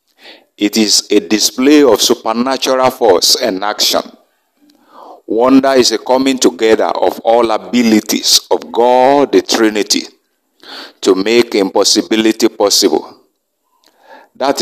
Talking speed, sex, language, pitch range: 105 wpm, male, English, 110-135 Hz